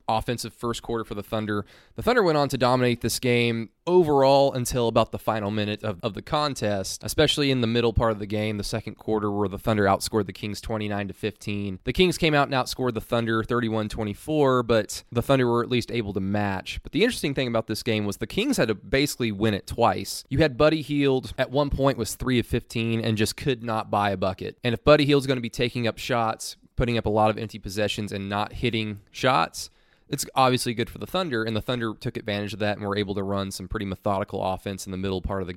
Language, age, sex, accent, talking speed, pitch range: English, 20-39, male, American, 245 wpm, 105-130 Hz